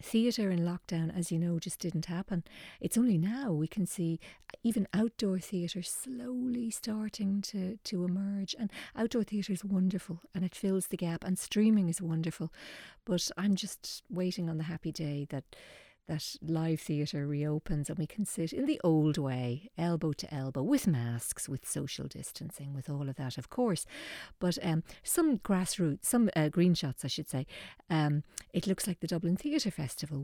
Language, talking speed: English, 180 wpm